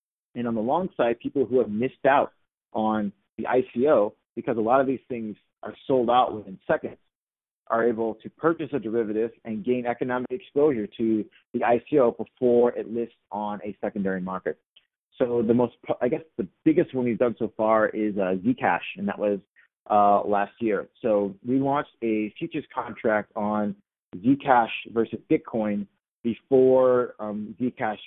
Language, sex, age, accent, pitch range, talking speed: English, male, 30-49, American, 105-125 Hz, 165 wpm